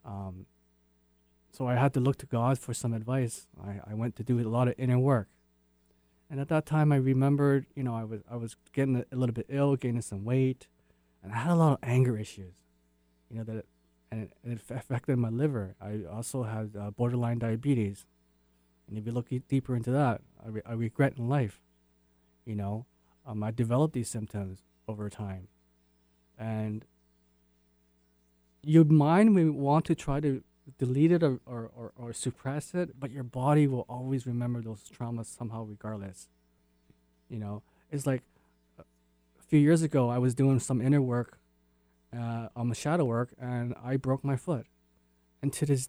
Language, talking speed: English, 180 wpm